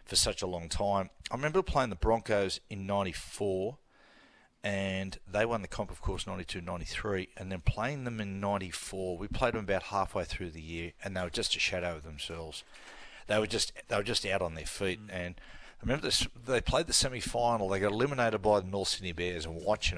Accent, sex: Australian, male